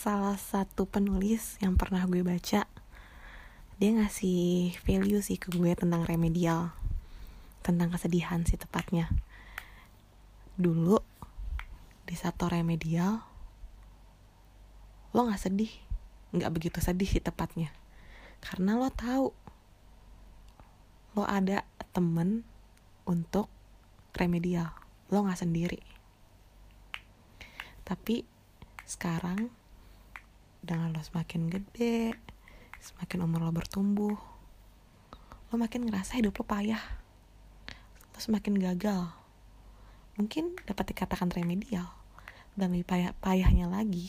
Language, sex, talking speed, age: Indonesian, female, 95 wpm, 20-39